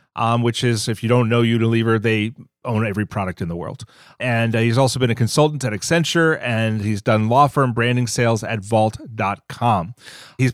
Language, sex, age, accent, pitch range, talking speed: English, male, 30-49, American, 115-145 Hz, 195 wpm